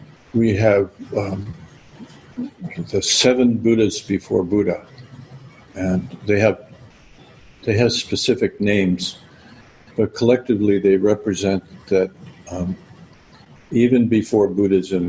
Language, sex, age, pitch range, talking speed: English, male, 60-79, 95-110 Hz, 95 wpm